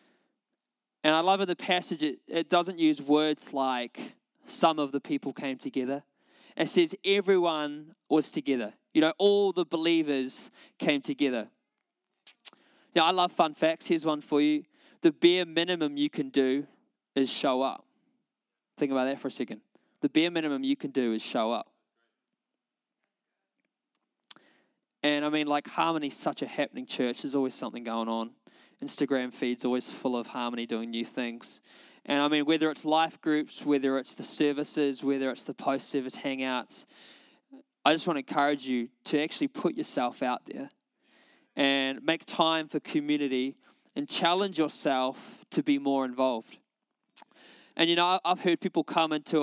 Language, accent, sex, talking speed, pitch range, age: English, Australian, male, 165 wpm, 135-175 Hz, 20-39